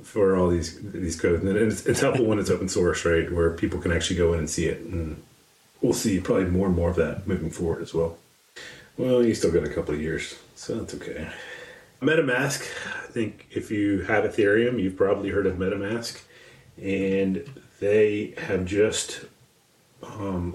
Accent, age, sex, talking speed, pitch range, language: American, 30-49, male, 185 wpm, 90-105 Hz, English